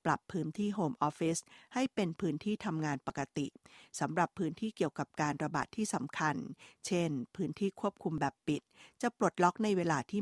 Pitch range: 150-195 Hz